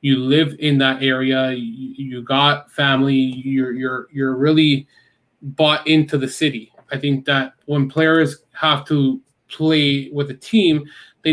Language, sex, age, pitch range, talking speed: English, male, 20-39, 135-155 Hz, 155 wpm